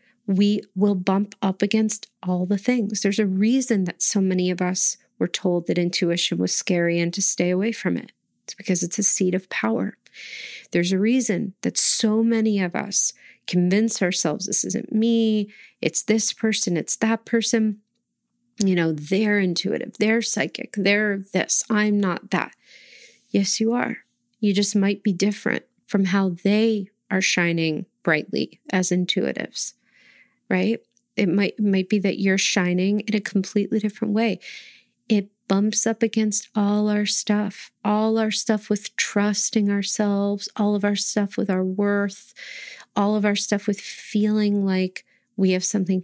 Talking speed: 160 wpm